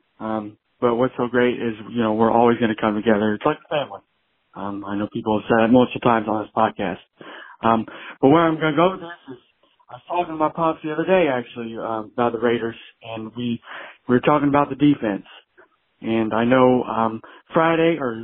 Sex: male